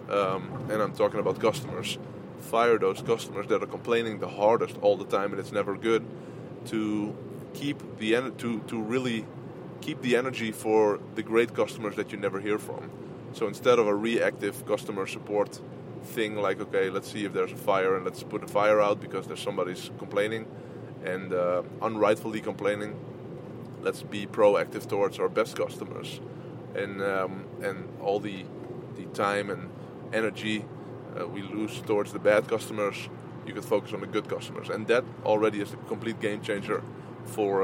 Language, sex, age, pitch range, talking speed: English, male, 20-39, 105-125 Hz, 175 wpm